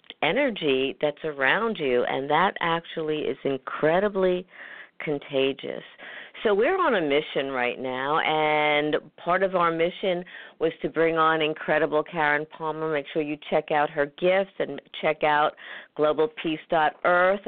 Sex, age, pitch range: female, 50-69, 140-175 Hz